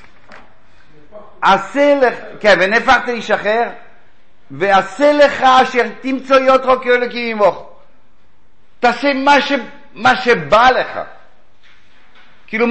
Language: Hebrew